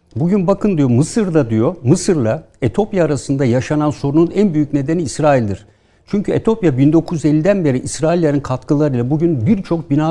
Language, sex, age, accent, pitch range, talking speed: Turkish, male, 60-79, native, 130-180 Hz, 135 wpm